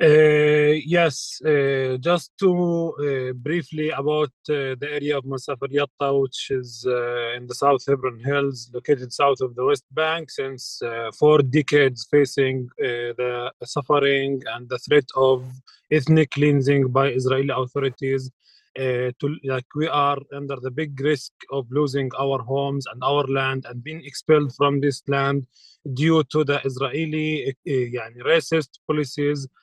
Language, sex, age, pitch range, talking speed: English, male, 30-49, 135-150 Hz, 150 wpm